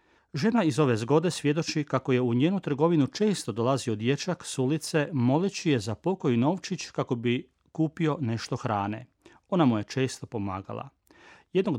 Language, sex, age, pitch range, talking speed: Croatian, male, 40-59, 120-155 Hz, 160 wpm